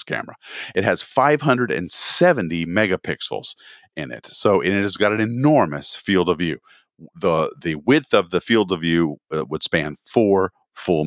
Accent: American